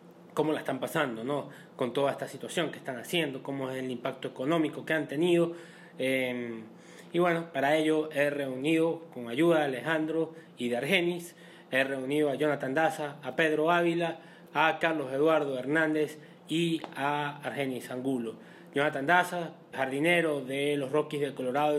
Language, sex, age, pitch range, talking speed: Spanish, male, 30-49, 140-170 Hz, 160 wpm